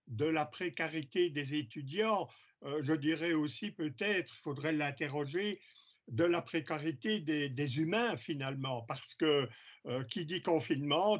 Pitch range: 155-210 Hz